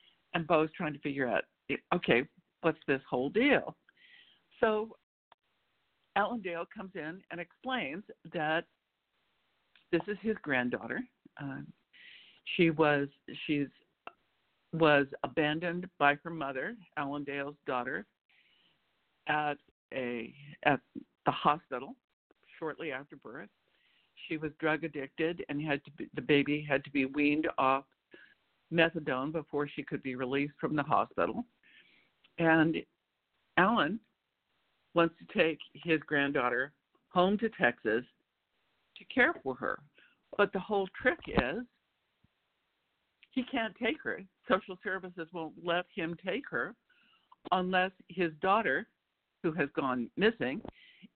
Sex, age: female, 60-79